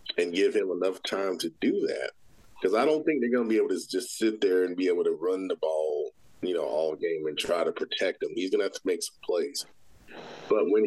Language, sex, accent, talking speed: English, male, American, 260 wpm